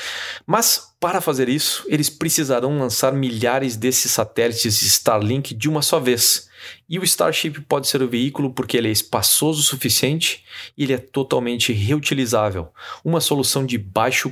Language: Portuguese